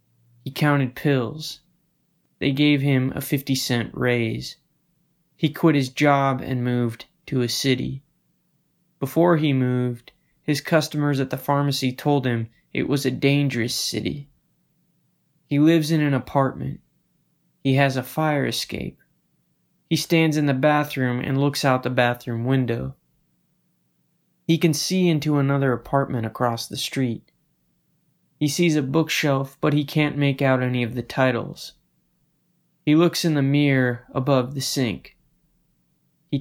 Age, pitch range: 20-39, 125-150 Hz